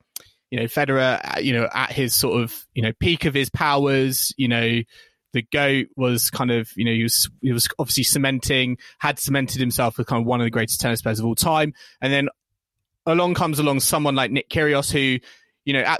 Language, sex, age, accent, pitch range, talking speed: English, male, 20-39, British, 120-155 Hz, 220 wpm